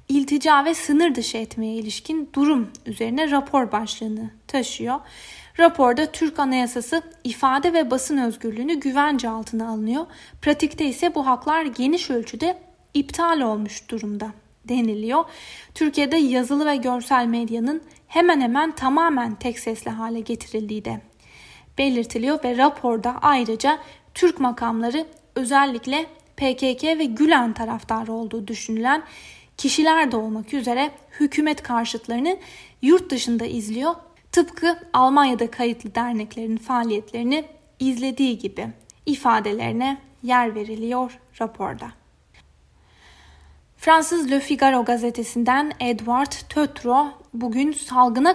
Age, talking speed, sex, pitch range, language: 10-29, 105 wpm, female, 230-295 Hz, Turkish